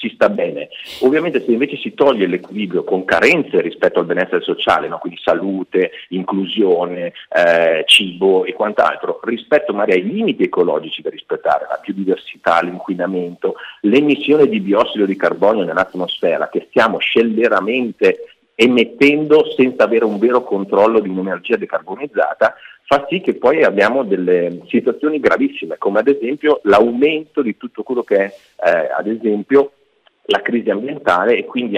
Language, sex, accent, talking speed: Italian, male, native, 140 wpm